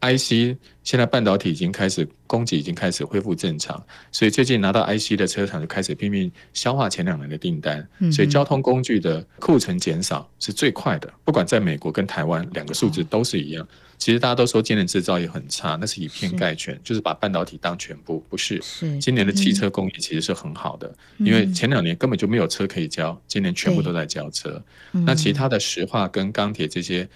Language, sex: Chinese, male